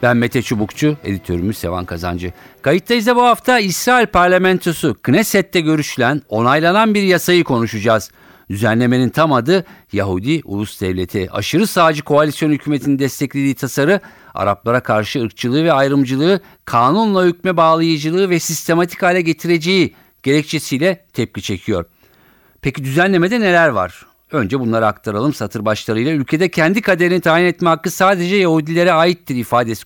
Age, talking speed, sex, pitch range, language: 50-69, 125 wpm, male, 110-175 Hz, Turkish